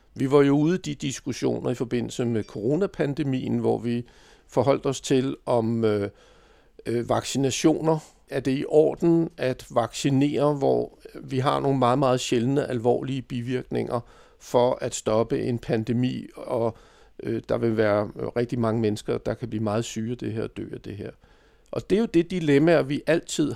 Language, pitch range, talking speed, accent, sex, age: Danish, 120-150 Hz, 170 wpm, native, male, 50-69